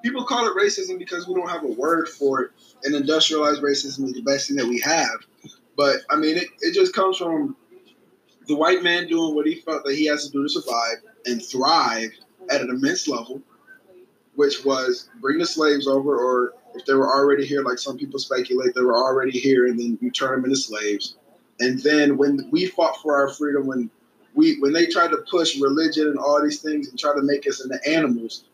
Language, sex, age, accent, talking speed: English, male, 20-39, American, 220 wpm